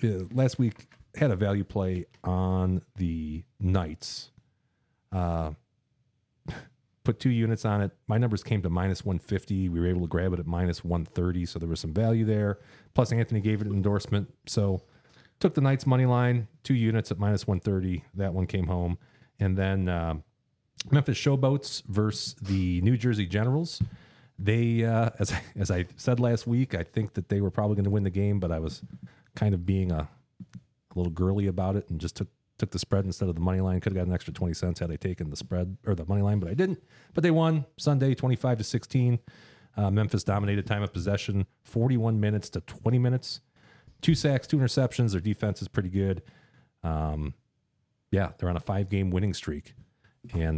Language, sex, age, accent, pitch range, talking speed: English, male, 40-59, American, 90-120 Hz, 195 wpm